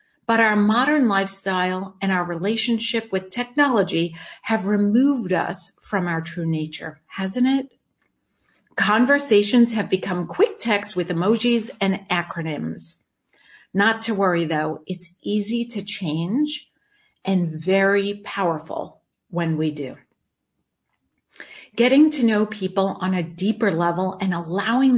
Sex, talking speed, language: female, 125 wpm, English